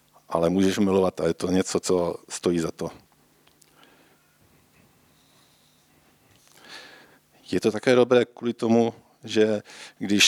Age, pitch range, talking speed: 50-69, 90-105 Hz, 110 wpm